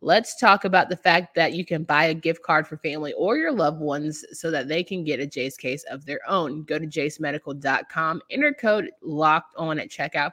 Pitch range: 150-185 Hz